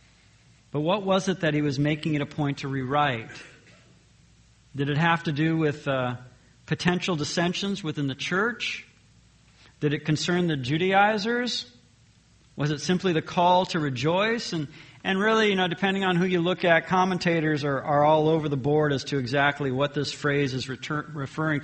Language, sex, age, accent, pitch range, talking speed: English, male, 50-69, American, 145-185 Hz, 175 wpm